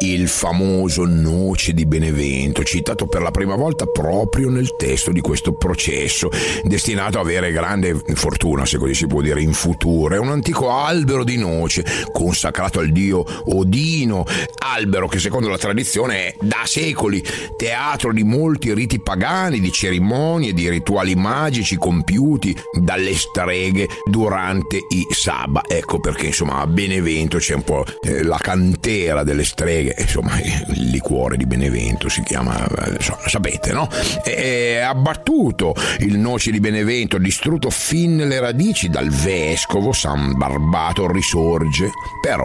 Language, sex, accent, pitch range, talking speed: Italian, male, native, 80-110 Hz, 145 wpm